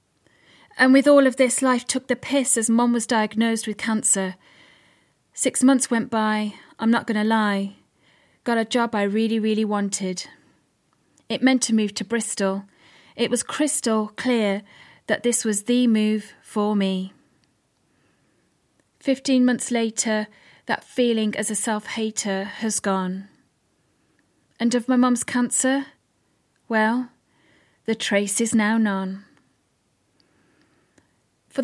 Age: 30-49